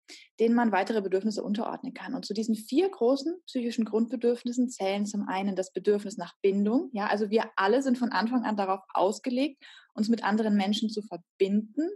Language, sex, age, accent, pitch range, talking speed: German, female, 20-39, German, 205-255 Hz, 180 wpm